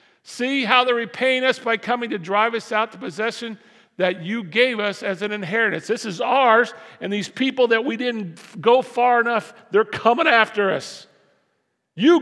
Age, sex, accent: 50-69, male, American